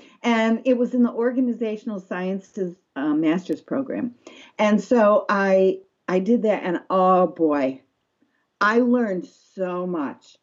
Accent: American